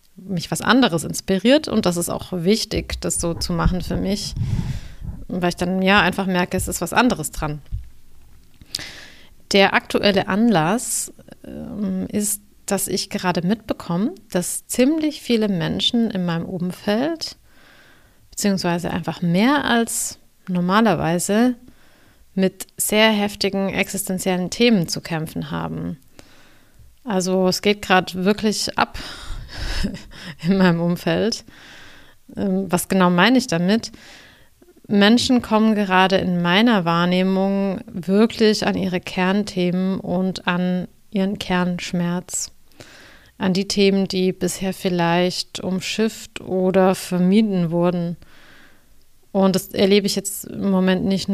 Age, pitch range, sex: 30-49, 180-210 Hz, female